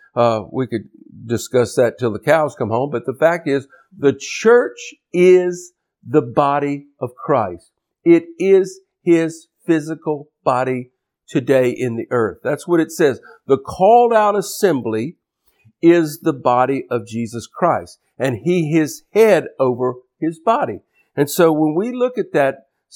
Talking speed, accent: 150 wpm, American